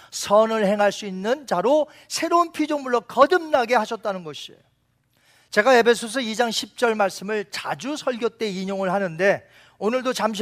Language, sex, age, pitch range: Korean, male, 40-59, 195-285 Hz